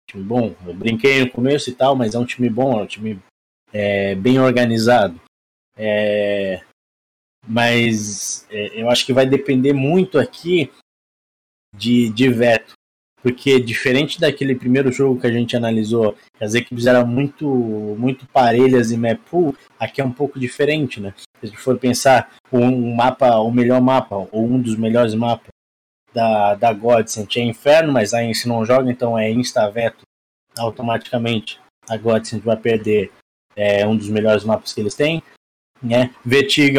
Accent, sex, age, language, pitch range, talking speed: Brazilian, male, 20-39, Portuguese, 110-130 Hz, 160 wpm